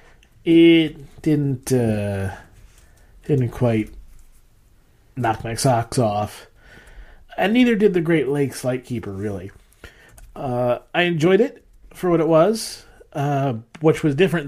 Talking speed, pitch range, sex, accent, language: 120 wpm, 110-145 Hz, male, American, English